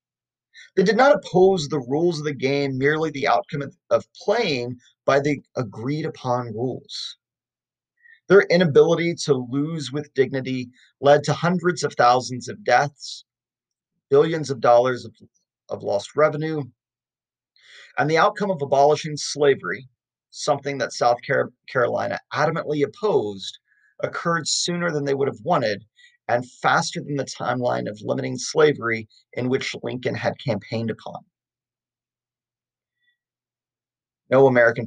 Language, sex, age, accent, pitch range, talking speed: English, male, 30-49, American, 125-150 Hz, 130 wpm